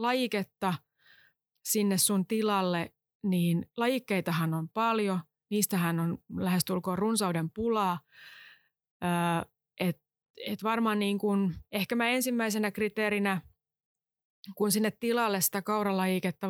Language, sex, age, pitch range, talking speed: Finnish, female, 20-39, 175-210 Hz, 100 wpm